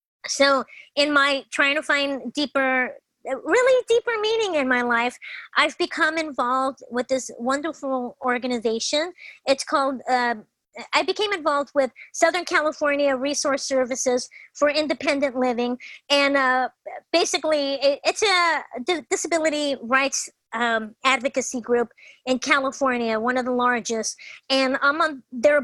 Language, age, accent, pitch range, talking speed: English, 30-49, American, 250-295 Hz, 125 wpm